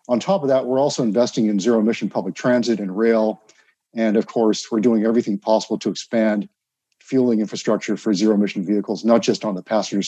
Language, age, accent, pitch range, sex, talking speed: English, 50-69, American, 105-120 Hz, male, 200 wpm